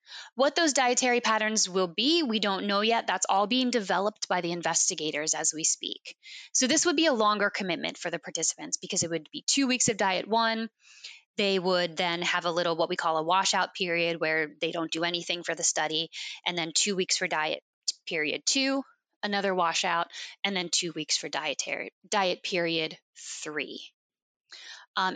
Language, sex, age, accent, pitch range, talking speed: English, female, 20-39, American, 180-235 Hz, 185 wpm